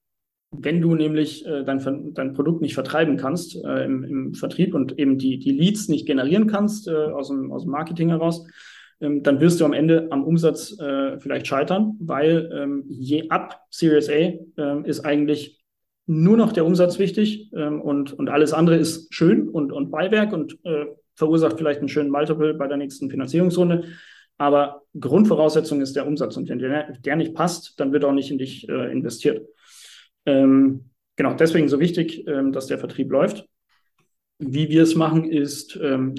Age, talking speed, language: 30-49, 180 wpm, German